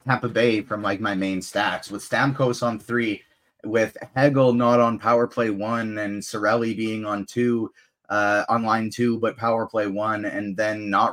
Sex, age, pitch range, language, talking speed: male, 20-39, 105-130 Hz, English, 185 wpm